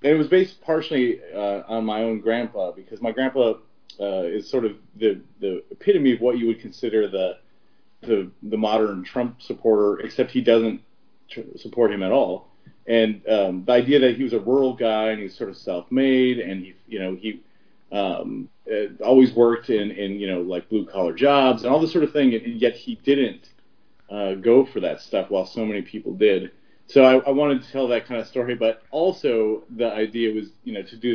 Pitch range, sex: 105-130 Hz, male